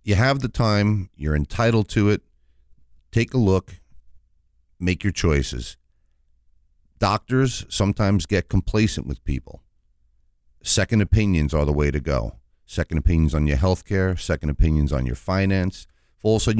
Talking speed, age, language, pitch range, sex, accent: 150 wpm, 50-69, English, 75-95 Hz, male, American